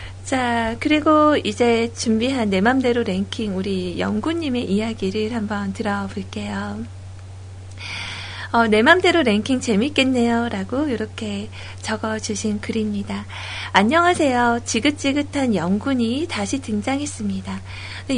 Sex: female